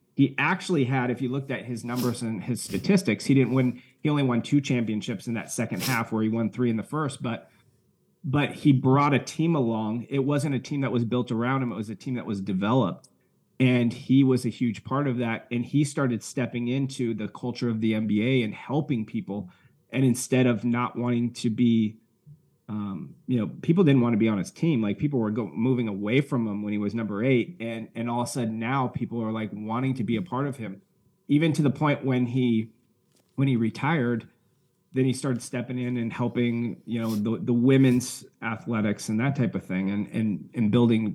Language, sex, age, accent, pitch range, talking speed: English, male, 30-49, American, 115-135 Hz, 225 wpm